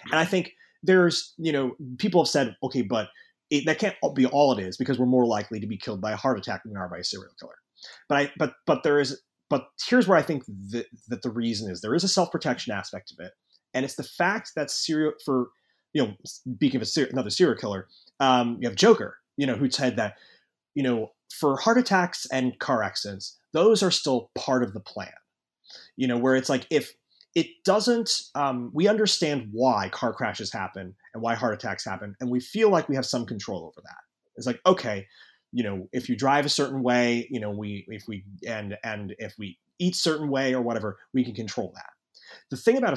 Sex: male